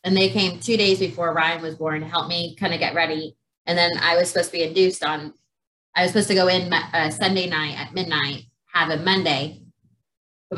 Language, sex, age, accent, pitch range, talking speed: English, female, 20-39, American, 155-190 Hz, 220 wpm